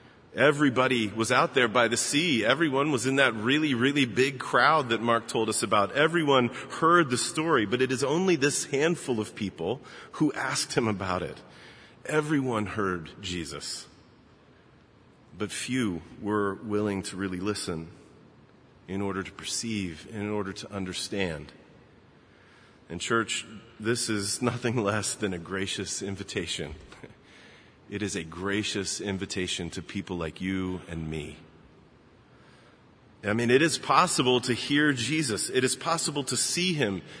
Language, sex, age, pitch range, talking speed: English, male, 40-59, 100-135 Hz, 145 wpm